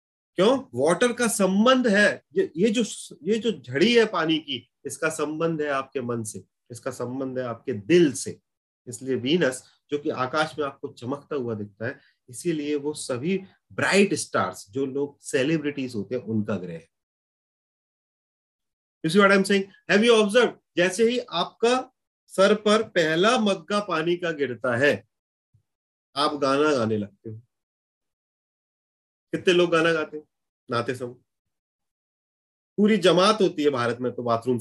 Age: 30-49